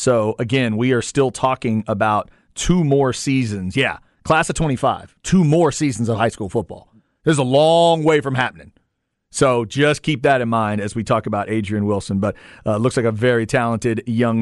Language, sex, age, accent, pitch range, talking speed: English, male, 40-59, American, 125-165 Hz, 200 wpm